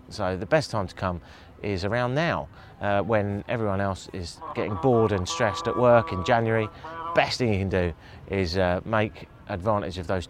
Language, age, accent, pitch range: English, 30-49, British, 95-130 Hz